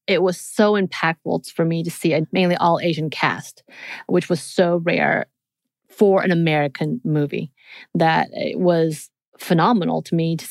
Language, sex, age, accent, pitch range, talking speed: English, female, 30-49, American, 170-220 Hz, 160 wpm